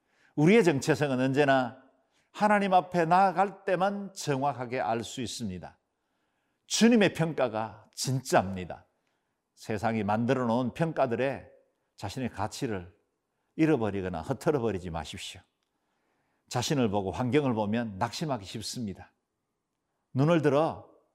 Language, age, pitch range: Korean, 50-69, 105-150 Hz